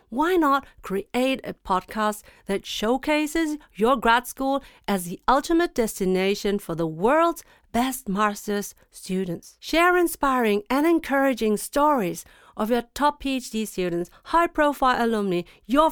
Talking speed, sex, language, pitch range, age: 125 wpm, female, English, 200-285 Hz, 50-69